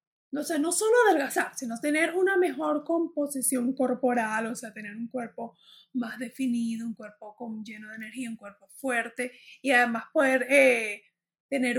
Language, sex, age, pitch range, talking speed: Spanish, female, 30-49, 240-305 Hz, 165 wpm